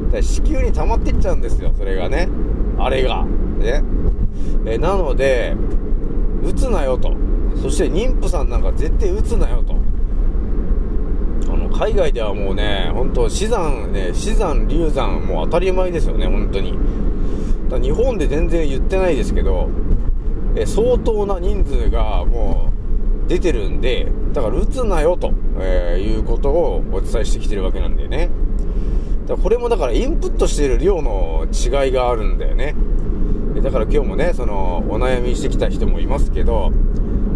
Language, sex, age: Japanese, male, 40-59